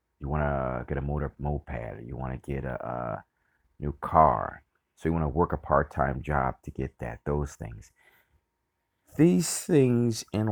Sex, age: male, 30-49